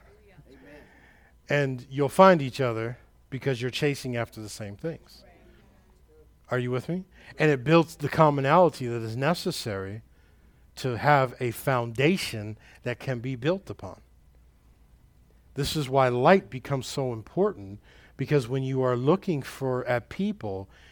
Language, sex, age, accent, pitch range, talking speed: English, male, 50-69, American, 105-150 Hz, 140 wpm